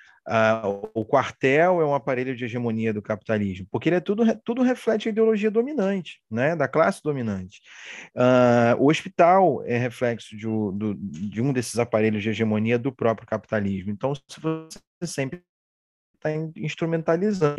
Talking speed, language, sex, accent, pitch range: 145 wpm, Portuguese, male, Brazilian, 120-165 Hz